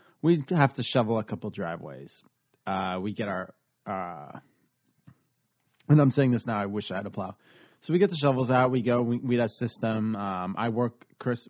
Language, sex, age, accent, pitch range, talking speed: English, male, 30-49, American, 110-135 Hz, 205 wpm